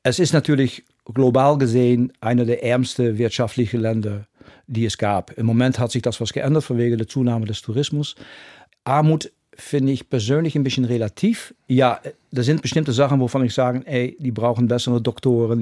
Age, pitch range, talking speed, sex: 50-69, 115-135 Hz, 175 wpm, male